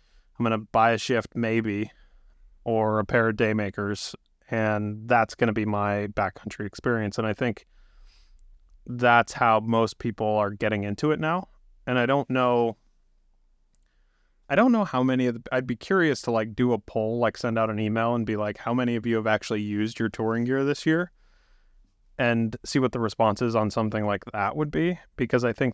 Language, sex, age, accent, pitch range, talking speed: English, male, 30-49, American, 105-125 Hz, 200 wpm